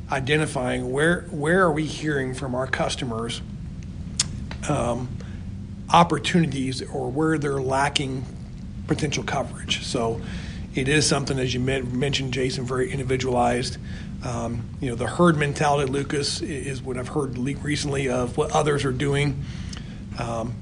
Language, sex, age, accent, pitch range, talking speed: English, male, 40-59, American, 125-150 Hz, 135 wpm